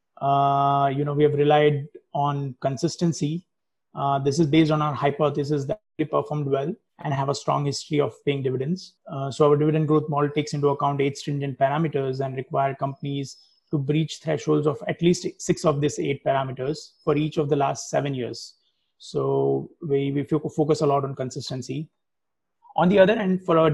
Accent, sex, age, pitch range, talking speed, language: Indian, male, 30-49, 140-165 Hz, 185 wpm, English